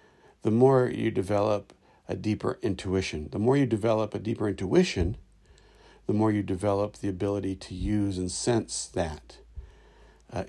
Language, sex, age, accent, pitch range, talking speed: English, male, 60-79, American, 95-115 Hz, 150 wpm